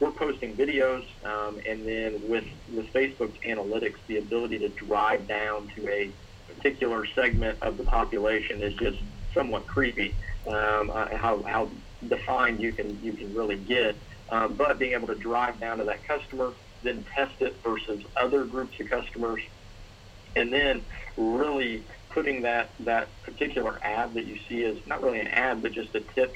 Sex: male